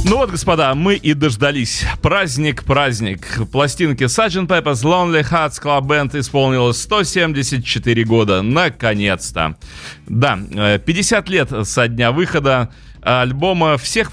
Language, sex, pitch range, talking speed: Russian, male, 105-145 Hz, 110 wpm